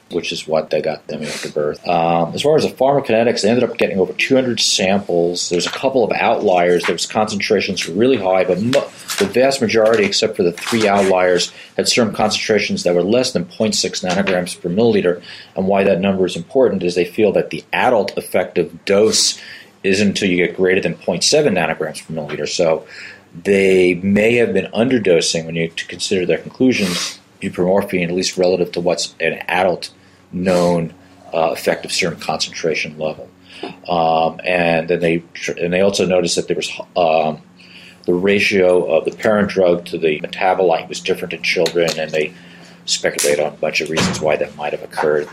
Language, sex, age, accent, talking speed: English, male, 40-59, American, 185 wpm